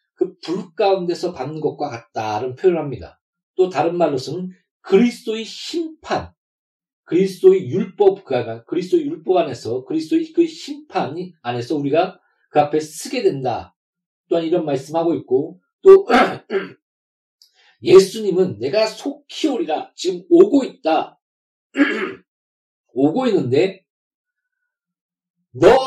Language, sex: Korean, male